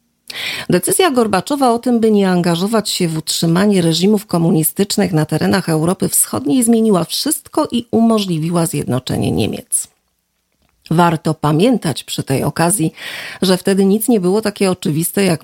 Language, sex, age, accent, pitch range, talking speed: Polish, female, 40-59, native, 160-215 Hz, 135 wpm